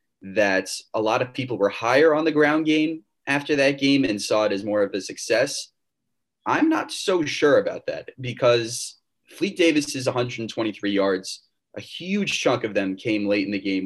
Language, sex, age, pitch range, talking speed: English, male, 20-39, 100-140 Hz, 185 wpm